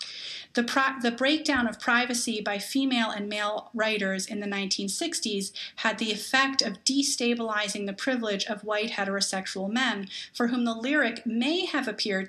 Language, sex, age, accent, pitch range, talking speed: English, female, 30-49, American, 195-240 Hz, 150 wpm